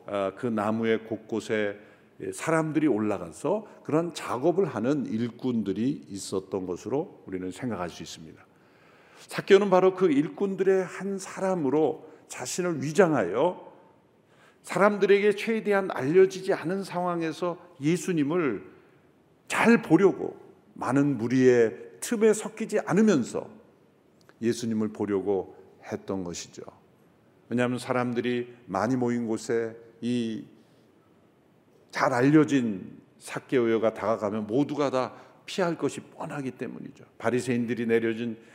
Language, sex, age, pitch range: Korean, male, 50-69, 115-190 Hz